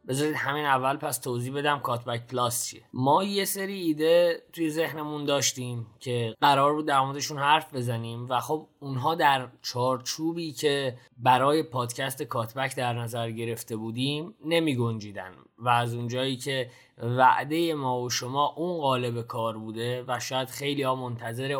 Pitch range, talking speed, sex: 125-165 Hz, 150 wpm, male